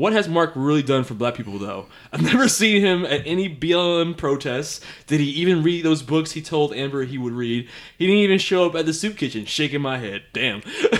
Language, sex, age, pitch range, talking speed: English, male, 20-39, 125-170 Hz, 230 wpm